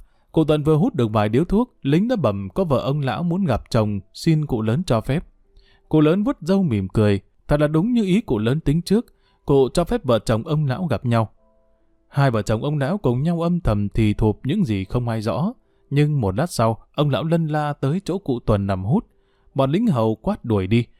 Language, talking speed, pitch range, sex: Vietnamese, 235 wpm, 110-160 Hz, male